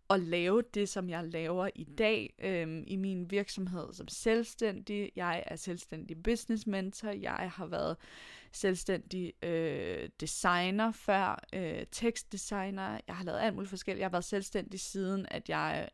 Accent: native